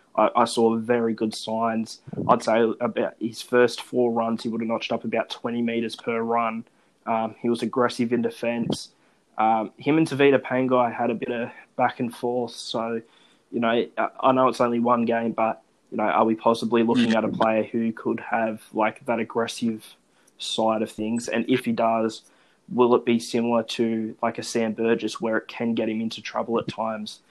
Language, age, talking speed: English, 20-39, 200 wpm